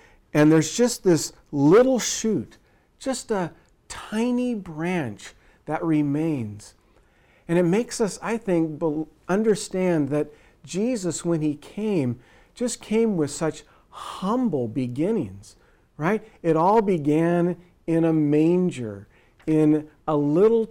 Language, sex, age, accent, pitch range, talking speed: English, male, 50-69, American, 140-190 Hz, 115 wpm